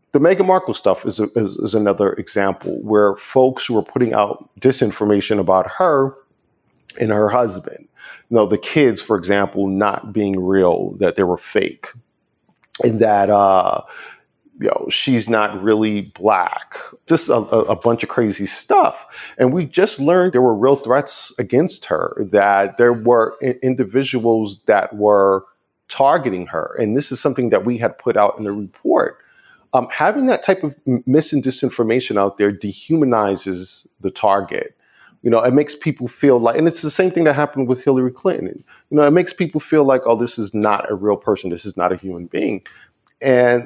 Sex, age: male, 50-69